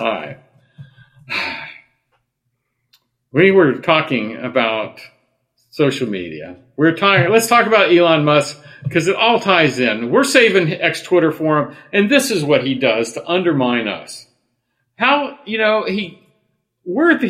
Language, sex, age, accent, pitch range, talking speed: English, male, 50-69, American, 130-200 Hz, 135 wpm